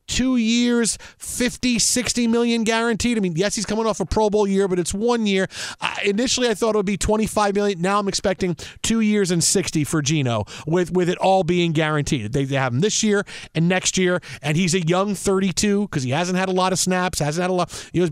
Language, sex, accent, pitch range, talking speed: English, male, American, 160-210 Hz, 235 wpm